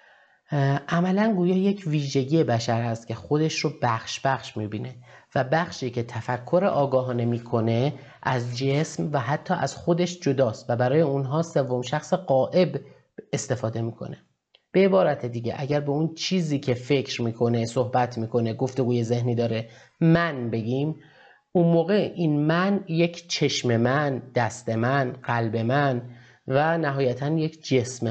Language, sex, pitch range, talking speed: Persian, male, 120-155 Hz, 140 wpm